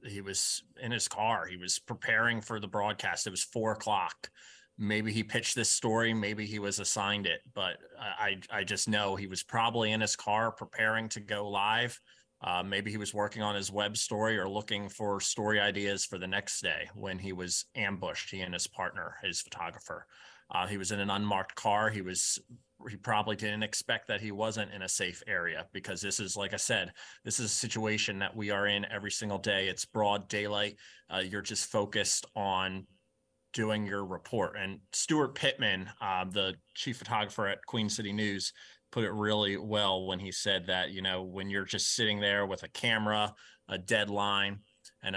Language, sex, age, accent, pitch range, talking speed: English, male, 30-49, American, 100-110 Hz, 195 wpm